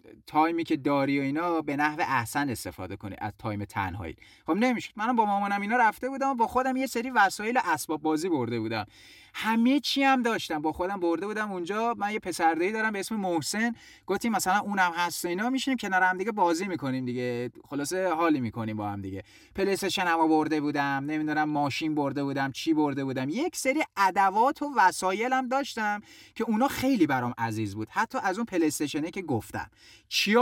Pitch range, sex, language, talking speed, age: 140-215 Hz, male, Persian, 185 wpm, 30-49